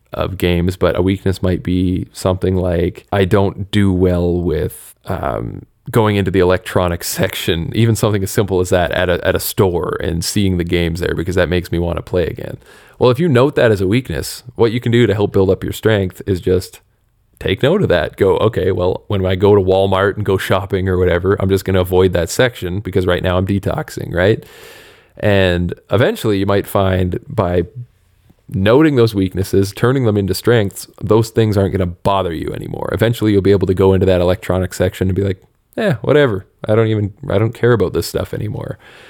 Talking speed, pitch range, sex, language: 215 wpm, 90-110 Hz, male, English